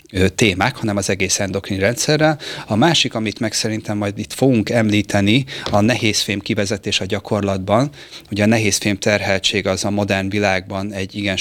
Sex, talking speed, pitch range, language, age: male, 160 wpm, 95-110 Hz, Hungarian, 30-49